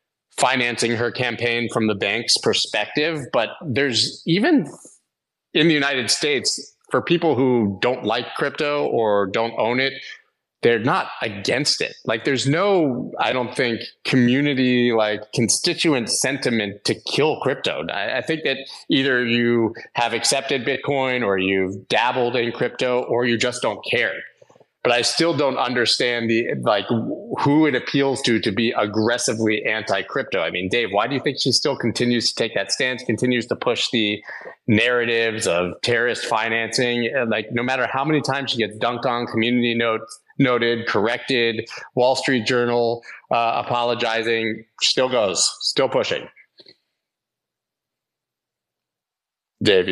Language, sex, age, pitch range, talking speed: English, male, 30-49, 115-130 Hz, 150 wpm